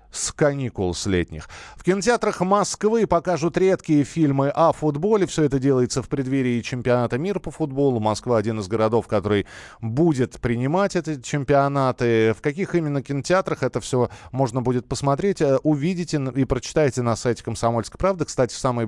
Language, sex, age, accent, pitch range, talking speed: Russian, male, 20-39, native, 115-155 Hz, 155 wpm